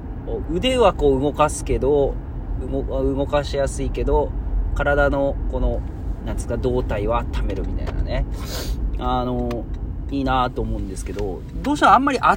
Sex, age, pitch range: male, 40-59, 85-140 Hz